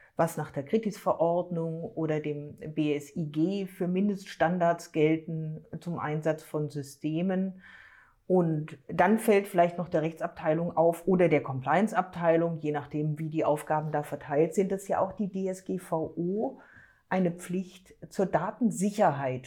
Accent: German